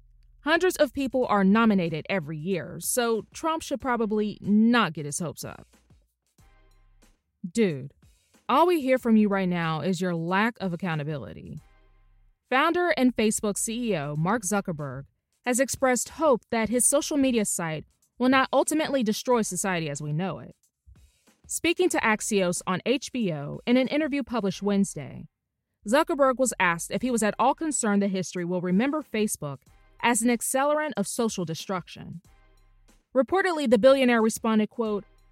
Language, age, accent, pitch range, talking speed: English, 20-39, American, 170-260 Hz, 150 wpm